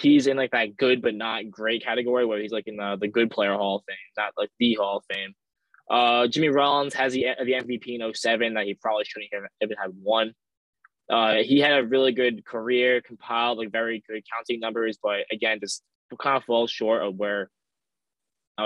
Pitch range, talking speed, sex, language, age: 110-125 Hz, 210 wpm, male, English, 10-29